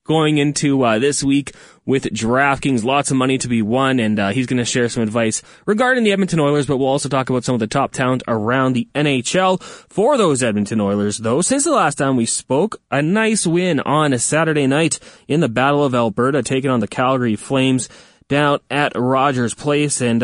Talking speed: 210 wpm